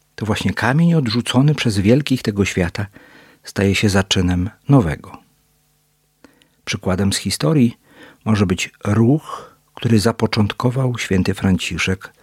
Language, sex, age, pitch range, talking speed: Polish, male, 50-69, 100-135 Hz, 110 wpm